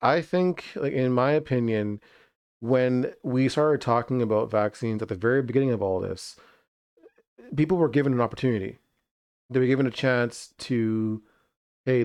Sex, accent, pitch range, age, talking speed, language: male, American, 110-130 Hz, 30-49, 155 wpm, English